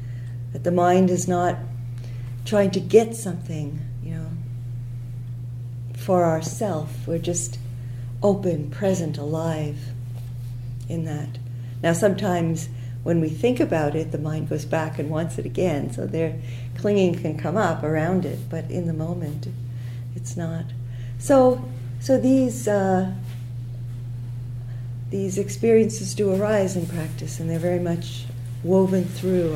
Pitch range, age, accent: 120-175 Hz, 50-69, American